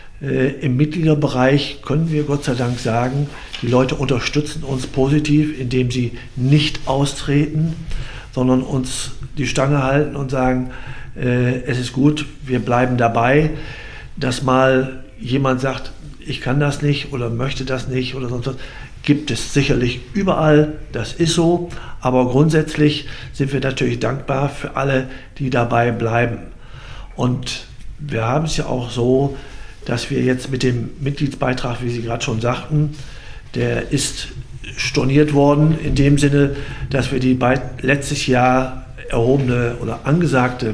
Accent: German